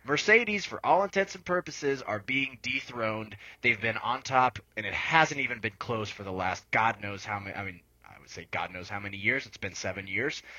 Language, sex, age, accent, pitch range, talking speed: English, male, 20-39, American, 105-135 Hz, 225 wpm